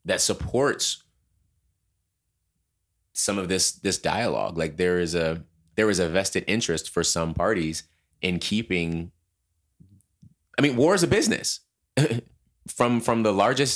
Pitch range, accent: 85-110 Hz, American